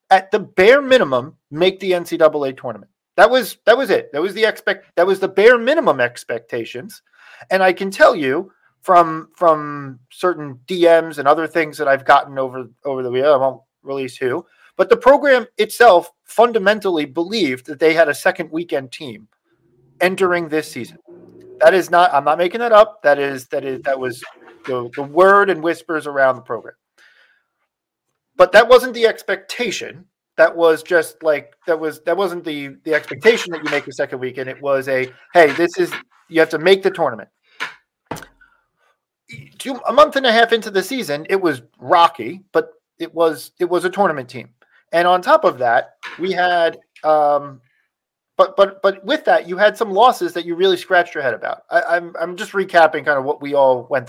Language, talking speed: English, 190 wpm